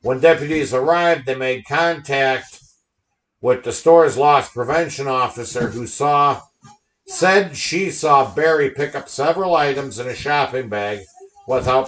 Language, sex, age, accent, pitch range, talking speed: English, male, 60-79, American, 120-155 Hz, 135 wpm